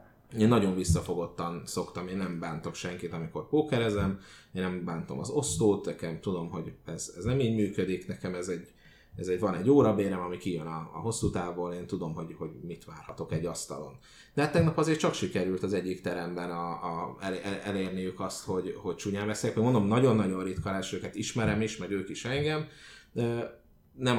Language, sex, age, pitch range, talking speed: Hungarian, male, 30-49, 90-115 Hz, 190 wpm